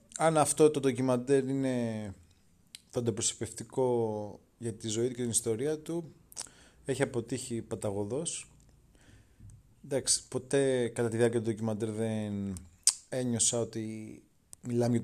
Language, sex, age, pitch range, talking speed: Greek, male, 30-49, 100-125 Hz, 115 wpm